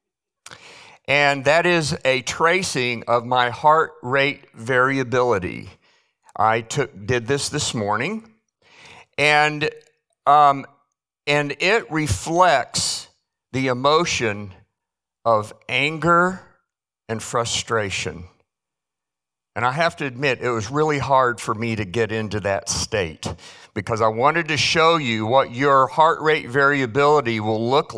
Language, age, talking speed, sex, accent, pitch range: English, 50-69, 120 wpm, male, American, 115-150 Hz